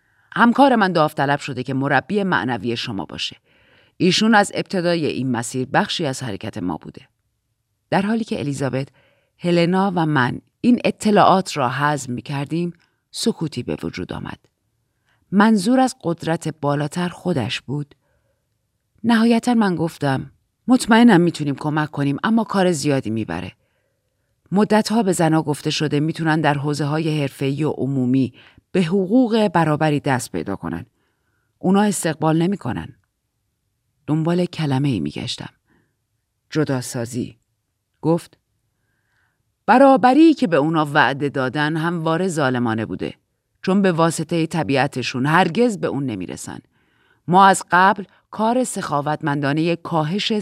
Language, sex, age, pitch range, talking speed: Persian, female, 40-59, 125-180 Hz, 125 wpm